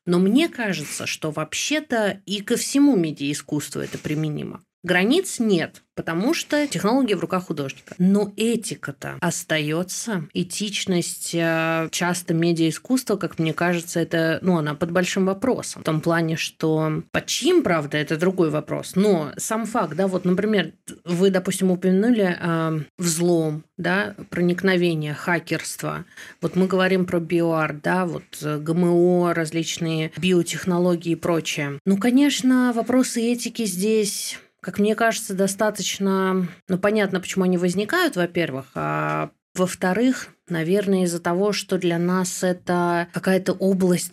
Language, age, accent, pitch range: Russian, 20-39, native, 160-195 Hz